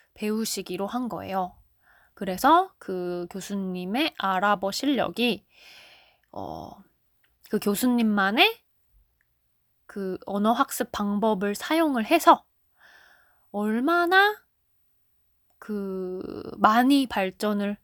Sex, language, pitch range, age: female, Korean, 190-250 Hz, 20-39